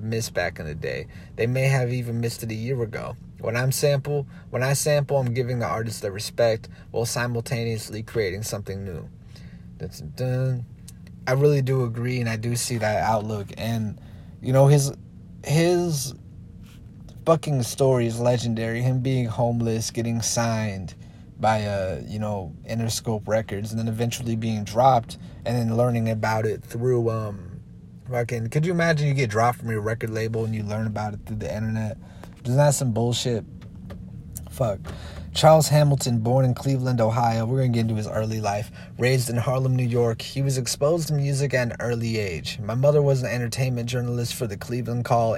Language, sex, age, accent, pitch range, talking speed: English, male, 30-49, American, 110-130 Hz, 180 wpm